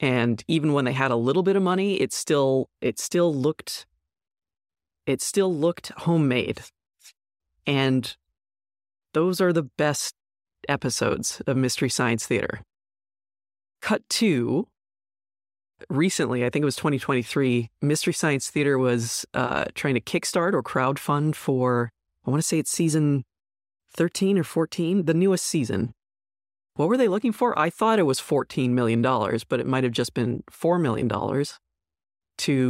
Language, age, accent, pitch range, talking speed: English, 20-39, American, 120-160 Hz, 145 wpm